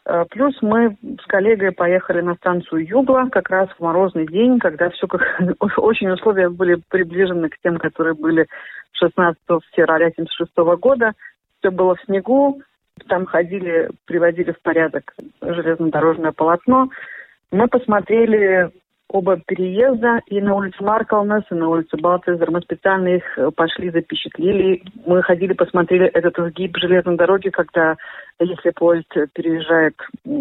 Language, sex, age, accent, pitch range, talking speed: Russian, female, 40-59, native, 165-200 Hz, 135 wpm